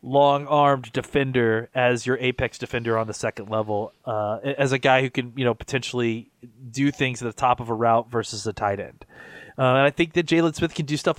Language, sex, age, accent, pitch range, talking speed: English, male, 30-49, American, 130-165 Hz, 220 wpm